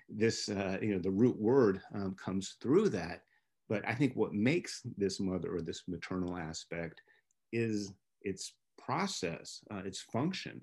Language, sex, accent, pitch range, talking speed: English, male, American, 95-120 Hz, 160 wpm